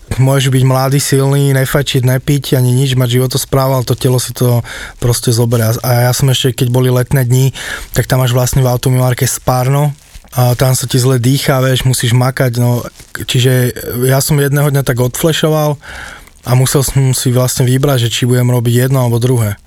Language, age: Slovak, 20-39